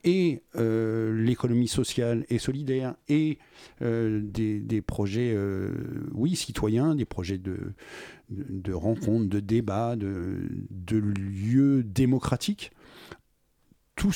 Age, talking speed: 50-69, 110 wpm